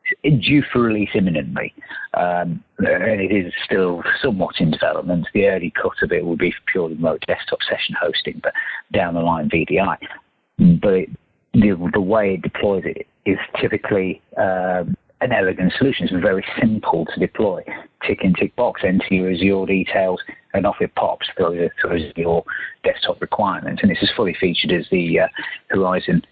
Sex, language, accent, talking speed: male, English, British, 170 wpm